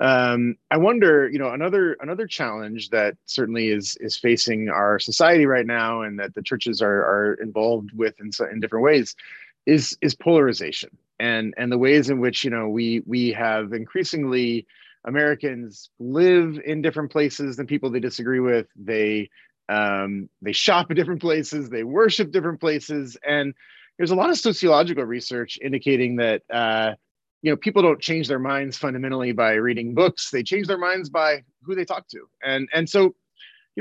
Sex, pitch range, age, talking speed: male, 115-160 Hz, 30-49, 175 wpm